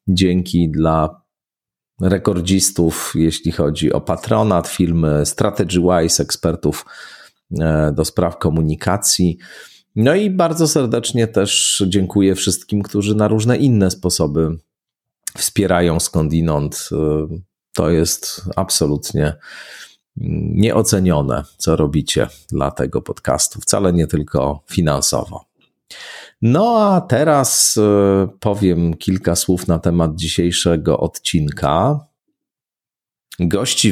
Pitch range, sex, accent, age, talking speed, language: 85-105 Hz, male, native, 40-59, 90 wpm, Polish